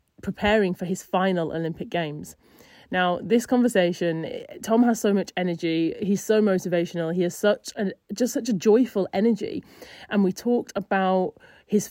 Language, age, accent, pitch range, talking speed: English, 30-49, British, 175-205 Hz, 155 wpm